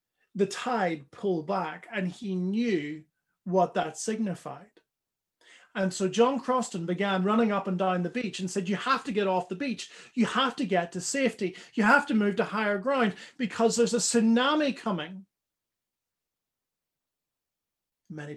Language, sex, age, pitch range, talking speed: English, male, 30-49, 180-245 Hz, 160 wpm